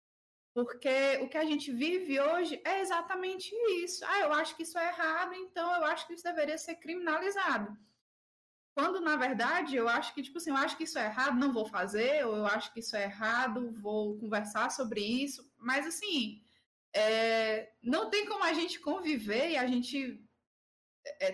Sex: female